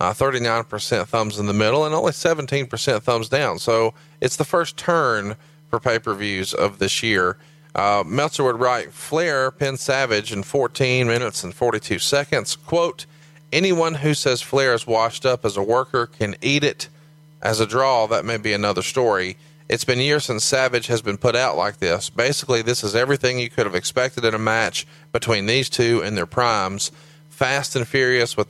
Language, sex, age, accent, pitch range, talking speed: English, male, 40-59, American, 110-140 Hz, 185 wpm